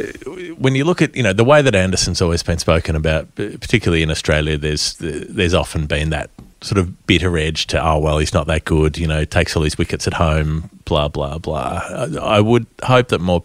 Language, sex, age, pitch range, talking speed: English, male, 30-49, 80-95 Hz, 220 wpm